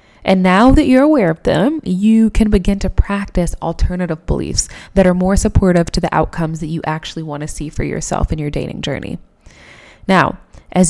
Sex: female